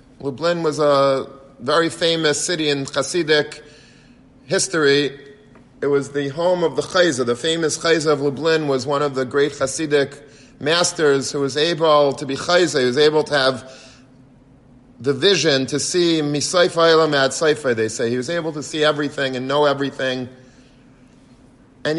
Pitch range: 135-160 Hz